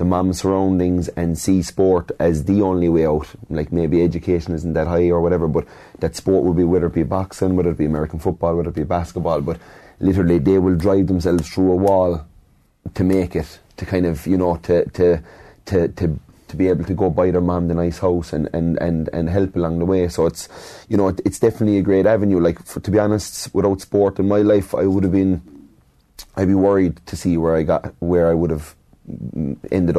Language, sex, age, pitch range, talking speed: English, male, 30-49, 80-95 Hz, 230 wpm